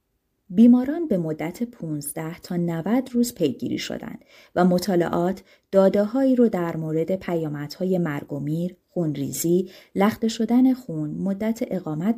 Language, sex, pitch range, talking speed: Persian, female, 155-220 Hz, 120 wpm